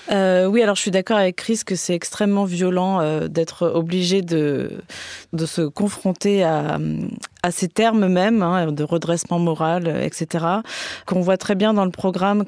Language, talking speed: French, 175 wpm